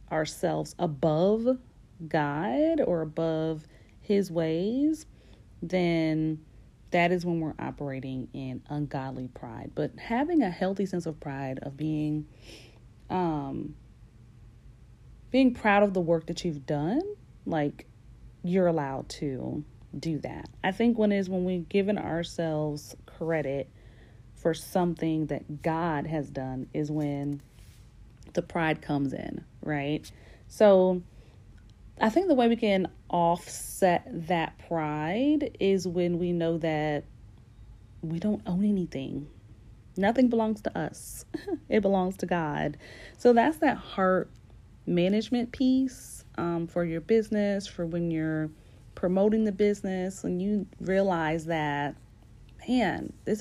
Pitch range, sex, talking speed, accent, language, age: 140-190 Hz, female, 125 wpm, American, English, 40-59